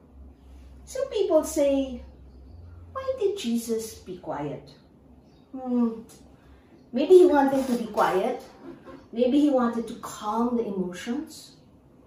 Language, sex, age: English, female, 50-69